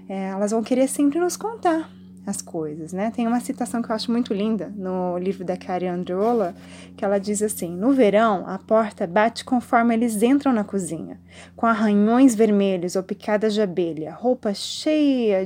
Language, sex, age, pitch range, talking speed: Portuguese, female, 20-39, 190-235 Hz, 175 wpm